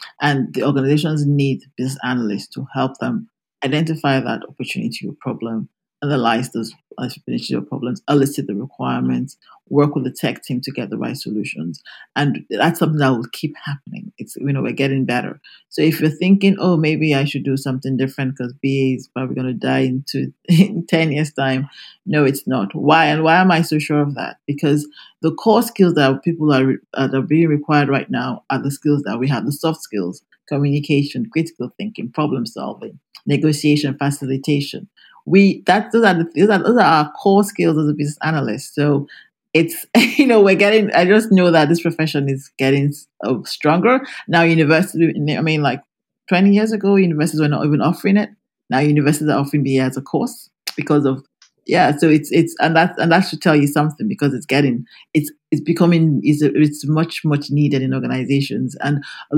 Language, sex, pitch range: English, male, 135-165 Hz